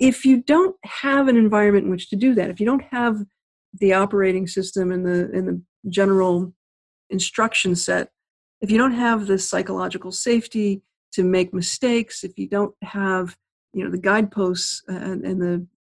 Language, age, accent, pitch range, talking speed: English, 50-69, American, 185-230 Hz, 165 wpm